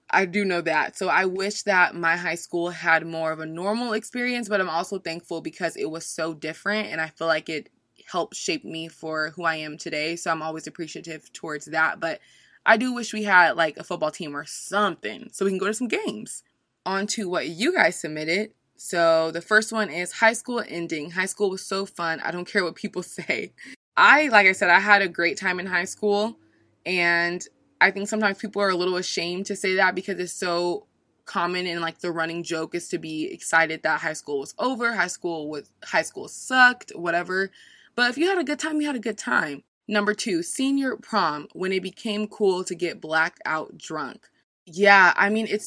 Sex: female